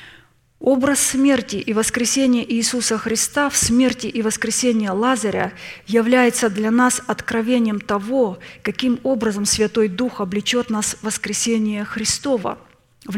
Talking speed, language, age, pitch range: 115 wpm, Russian, 20-39, 210-245 Hz